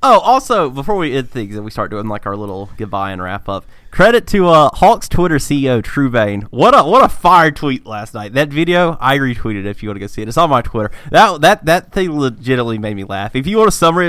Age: 20-39